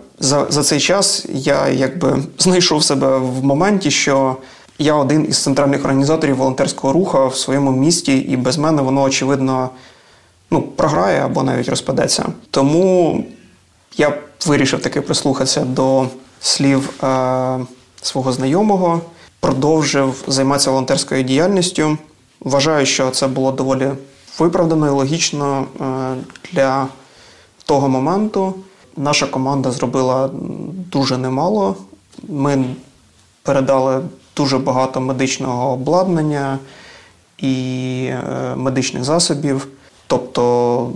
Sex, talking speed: male, 105 wpm